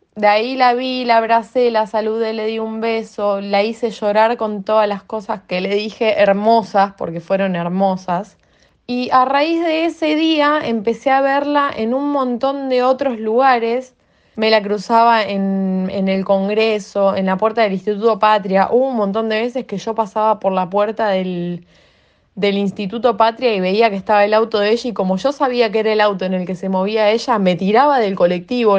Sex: female